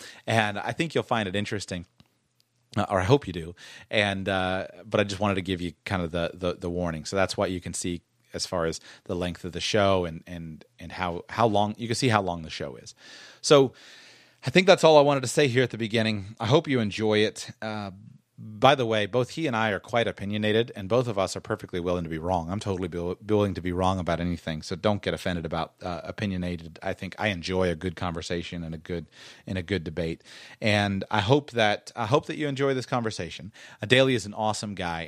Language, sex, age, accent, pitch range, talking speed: English, male, 30-49, American, 90-110 Hz, 240 wpm